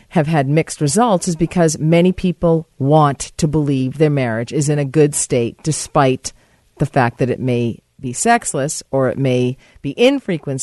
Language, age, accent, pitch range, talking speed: English, 40-59, American, 140-195 Hz, 175 wpm